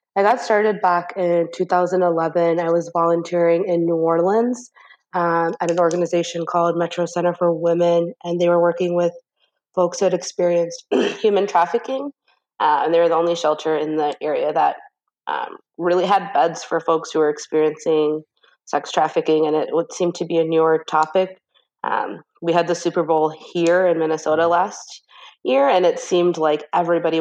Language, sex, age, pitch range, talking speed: English, female, 20-39, 155-190 Hz, 175 wpm